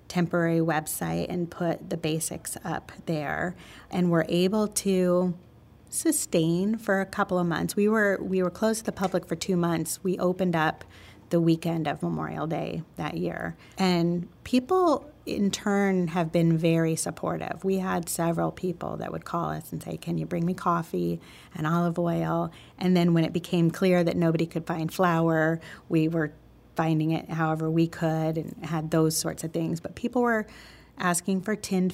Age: 30-49